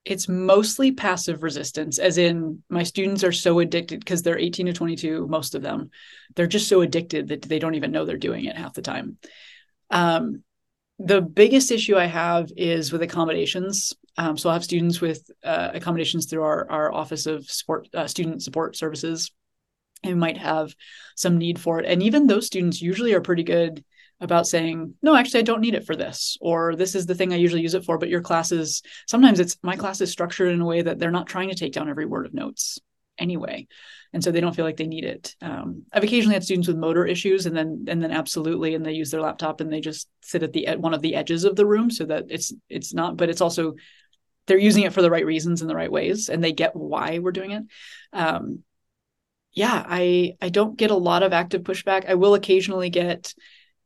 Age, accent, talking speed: 20-39, American, 225 wpm